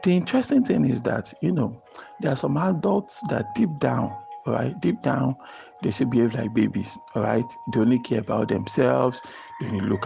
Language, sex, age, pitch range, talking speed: English, male, 50-69, 115-175 Hz, 195 wpm